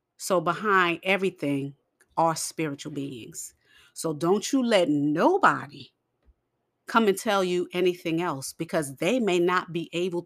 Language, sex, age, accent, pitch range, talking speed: English, female, 40-59, American, 155-185 Hz, 135 wpm